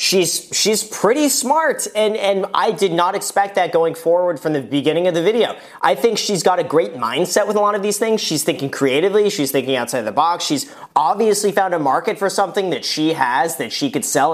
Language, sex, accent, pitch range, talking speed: English, male, American, 160-215 Hz, 225 wpm